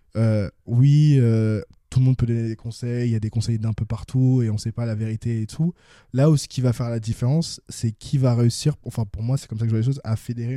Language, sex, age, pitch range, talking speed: French, male, 20-39, 110-130 Hz, 290 wpm